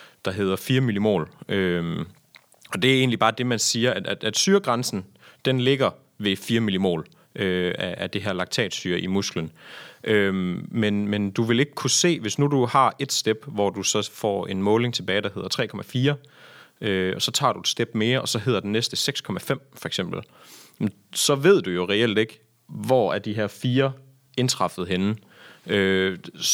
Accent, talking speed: native, 190 wpm